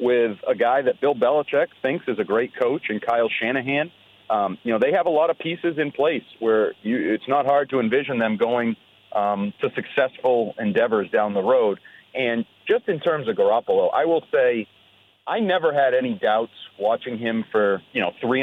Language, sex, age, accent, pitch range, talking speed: English, male, 40-59, American, 115-150 Hz, 195 wpm